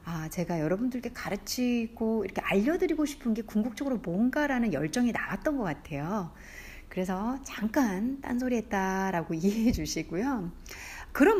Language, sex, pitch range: Korean, female, 185-265 Hz